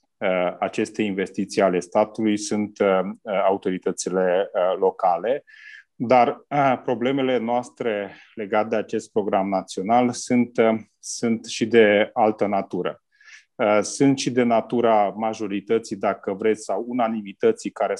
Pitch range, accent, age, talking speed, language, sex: 105-120 Hz, native, 30-49, 105 wpm, Romanian, male